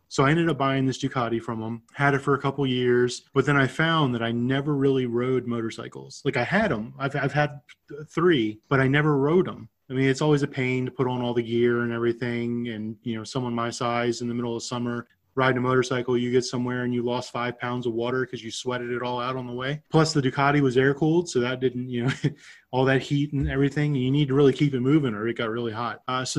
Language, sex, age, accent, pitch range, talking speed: English, male, 20-39, American, 120-140 Hz, 260 wpm